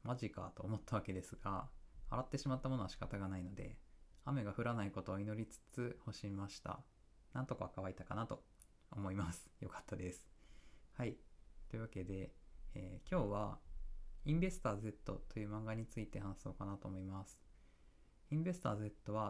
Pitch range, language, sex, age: 95-130 Hz, Japanese, male, 20-39